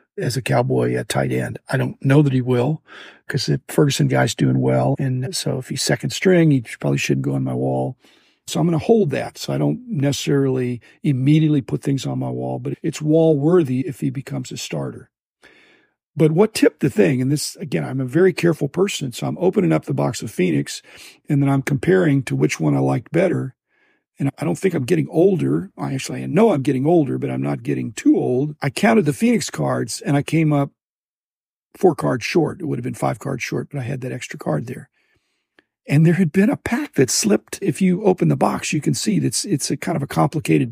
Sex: male